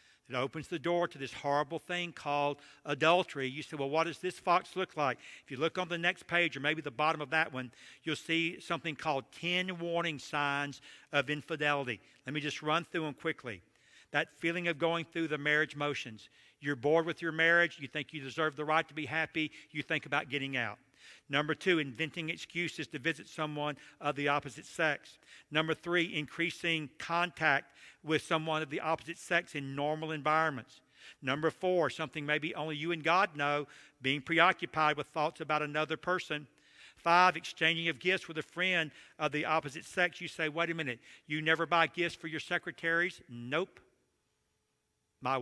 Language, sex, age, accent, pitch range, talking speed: English, male, 50-69, American, 145-170 Hz, 185 wpm